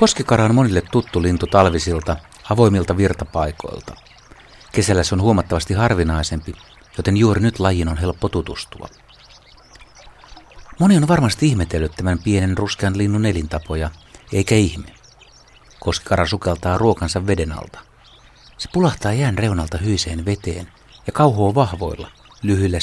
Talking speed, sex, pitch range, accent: 120 wpm, male, 85-110 Hz, native